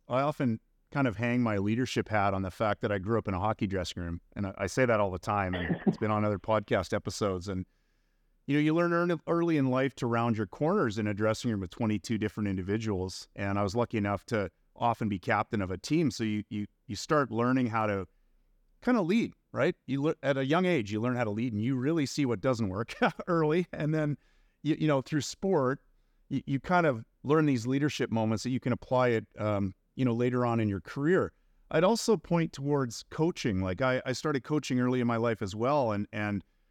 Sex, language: male, English